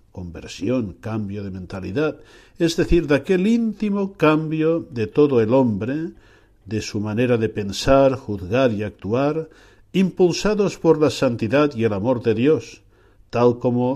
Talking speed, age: 140 wpm, 60-79